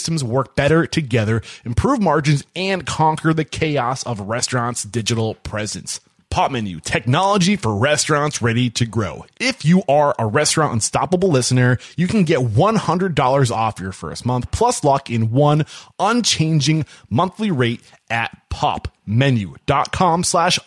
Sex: male